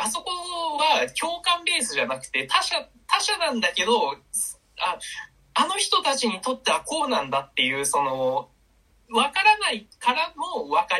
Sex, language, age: male, Japanese, 20-39